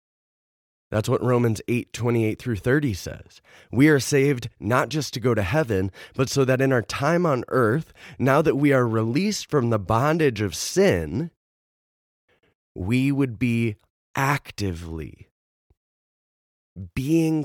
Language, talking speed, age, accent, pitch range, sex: English, 130 wpm, 30-49, American, 90-130 Hz, male